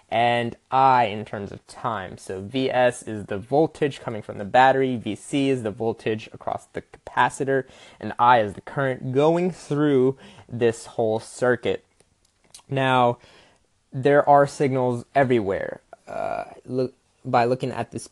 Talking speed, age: 140 wpm, 20-39